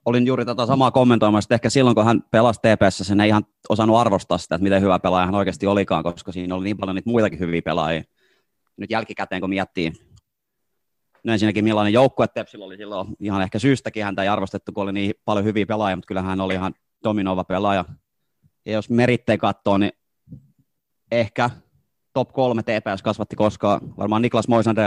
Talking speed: 185 wpm